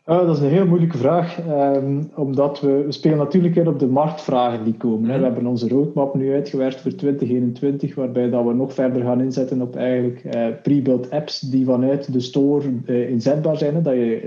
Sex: male